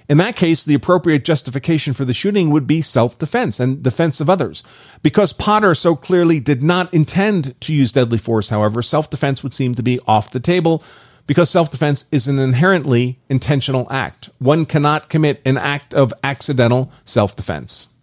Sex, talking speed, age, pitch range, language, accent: male, 170 wpm, 40-59, 125-160 Hz, English, American